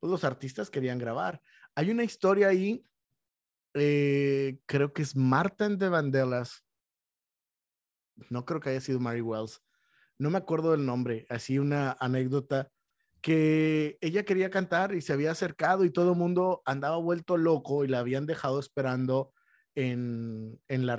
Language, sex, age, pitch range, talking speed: Spanish, male, 30-49, 135-185 Hz, 155 wpm